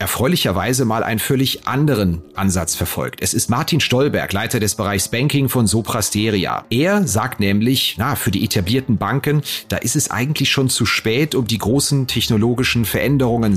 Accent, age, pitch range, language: German, 30-49, 105-135 Hz, German